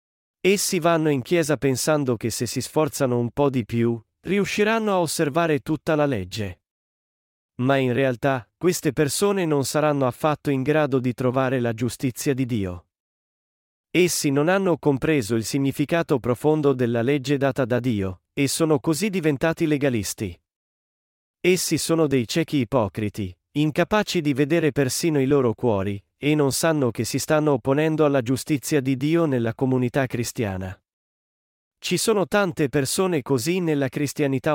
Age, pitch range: 40-59, 125-155 Hz